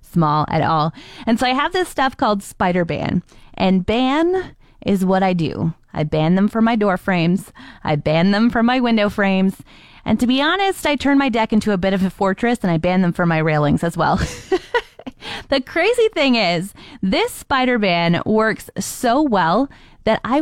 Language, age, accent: English, 20-39, American